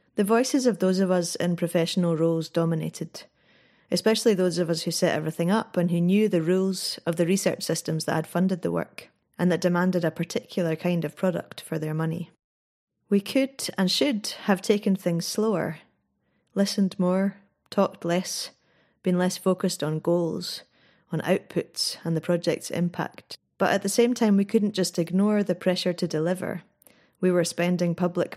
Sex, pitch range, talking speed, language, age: female, 165-195 Hz, 175 wpm, English, 20-39